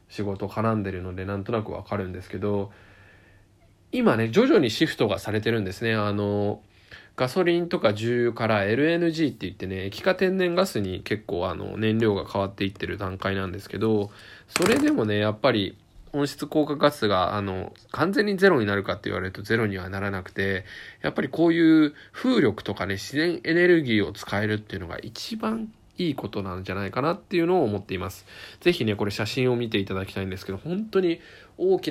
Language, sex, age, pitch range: Japanese, male, 20-39, 100-135 Hz